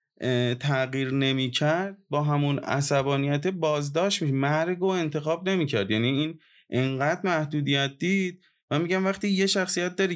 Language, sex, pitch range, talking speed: Persian, male, 130-170 Hz, 140 wpm